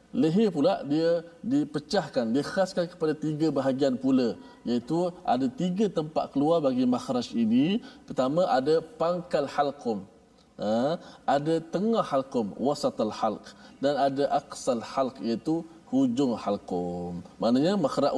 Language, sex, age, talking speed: Malayalam, male, 20-39, 120 wpm